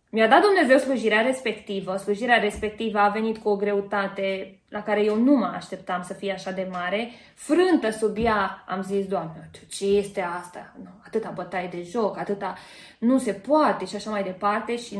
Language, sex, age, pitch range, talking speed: Romanian, female, 20-39, 195-225 Hz, 175 wpm